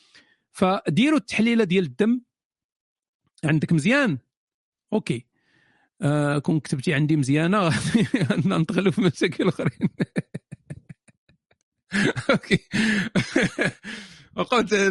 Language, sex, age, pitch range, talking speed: Arabic, male, 50-69, 165-245 Hz, 70 wpm